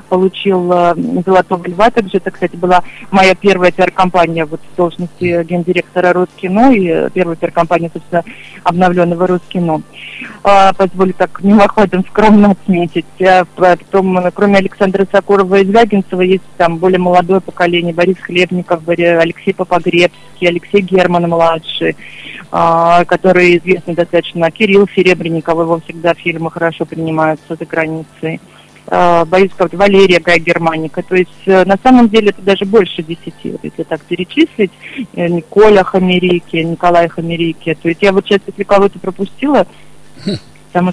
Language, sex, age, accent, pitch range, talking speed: Russian, female, 20-39, native, 170-190 Hz, 130 wpm